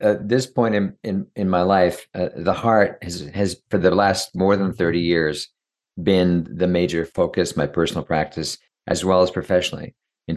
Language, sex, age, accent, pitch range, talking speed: English, male, 50-69, American, 80-95 Hz, 185 wpm